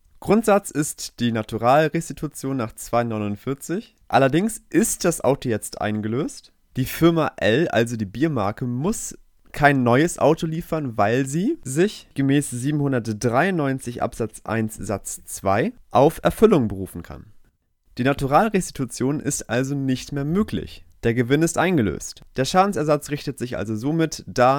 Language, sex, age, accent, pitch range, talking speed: German, male, 30-49, German, 115-160 Hz, 130 wpm